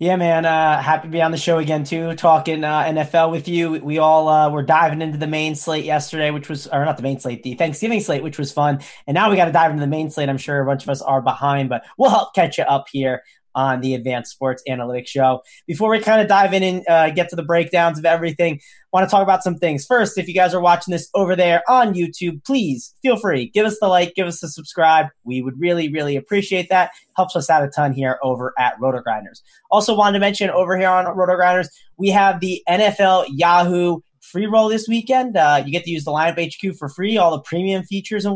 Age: 20-39